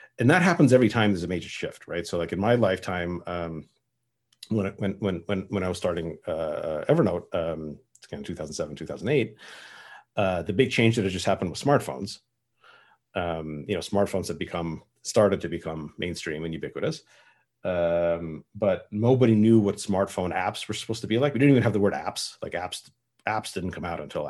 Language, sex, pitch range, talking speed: English, male, 90-115 Hz, 205 wpm